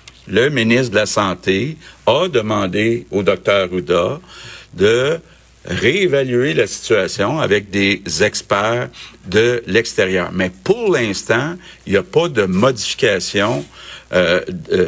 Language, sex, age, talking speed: French, male, 60-79, 115 wpm